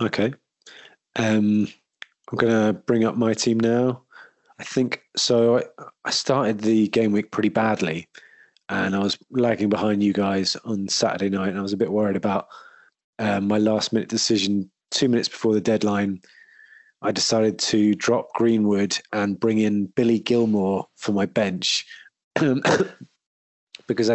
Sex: male